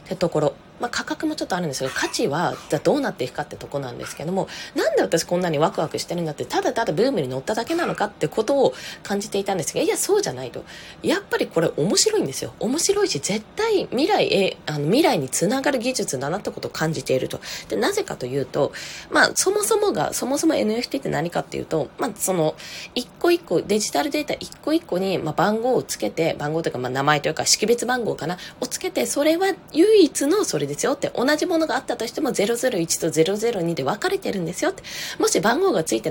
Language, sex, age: Japanese, female, 20-39